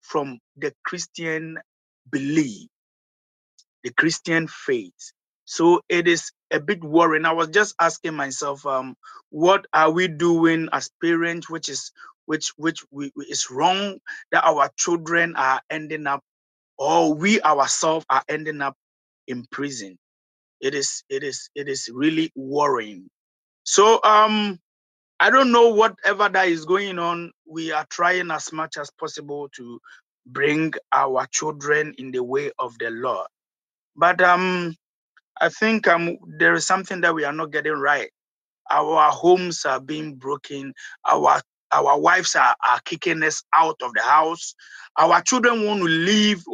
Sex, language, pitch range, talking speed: male, English, 150-195 Hz, 145 wpm